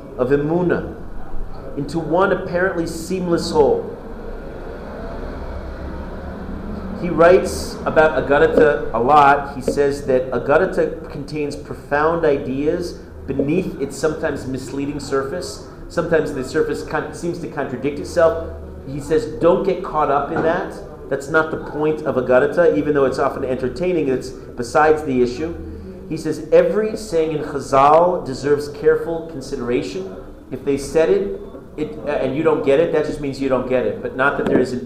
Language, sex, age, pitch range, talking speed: English, male, 40-59, 130-165 Hz, 150 wpm